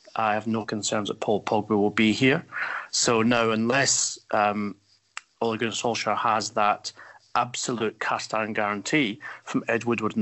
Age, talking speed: 40-59, 155 wpm